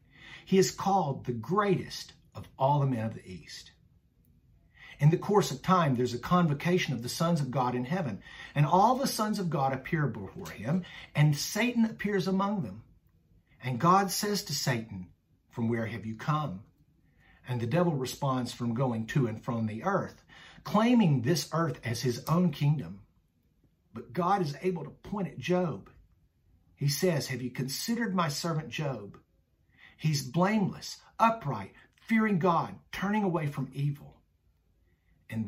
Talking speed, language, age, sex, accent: 160 wpm, English, 50-69, male, American